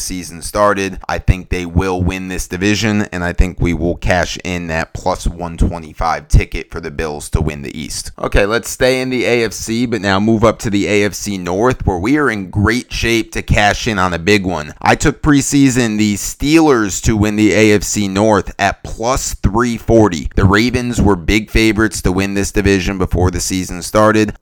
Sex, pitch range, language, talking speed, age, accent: male, 95-110 Hz, English, 195 wpm, 30-49, American